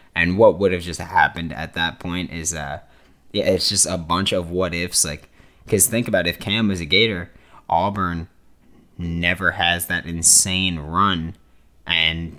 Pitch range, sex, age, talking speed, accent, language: 85-100 Hz, male, 20-39, 170 wpm, American, English